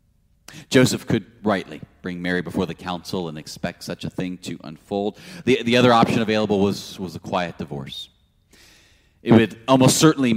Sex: male